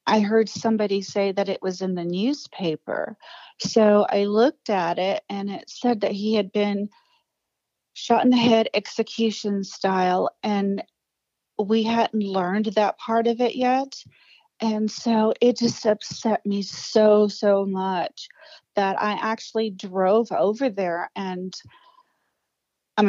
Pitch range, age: 200-245 Hz, 40-59